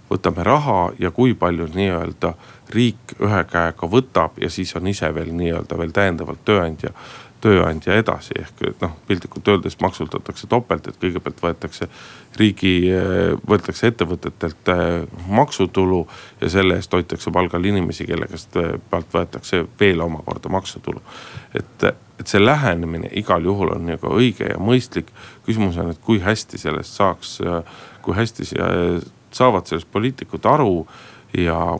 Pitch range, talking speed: 85-110 Hz, 140 wpm